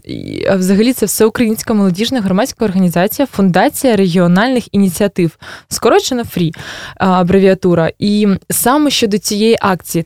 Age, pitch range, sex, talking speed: 20-39, 180-230 Hz, female, 105 wpm